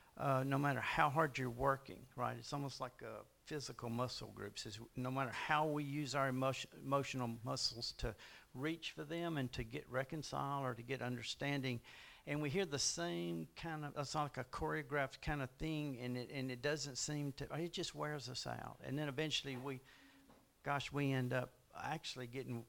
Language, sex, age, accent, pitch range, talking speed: English, male, 50-69, American, 120-150 Hz, 200 wpm